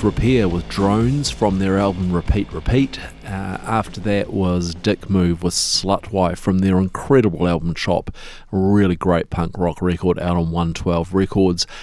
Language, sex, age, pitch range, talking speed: English, male, 40-59, 90-100 Hz, 160 wpm